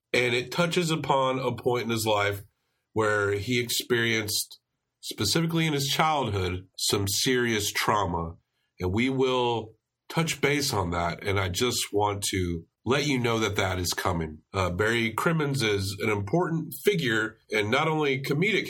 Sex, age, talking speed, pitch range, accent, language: male, 40-59, 155 wpm, 100-140 Hz, American, English